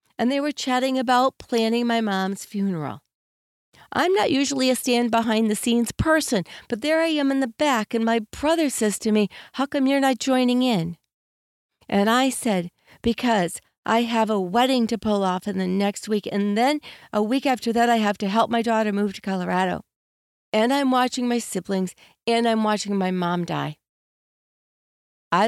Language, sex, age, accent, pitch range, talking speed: English, female, 40-59, American, 185-250 Hz, 180 wpm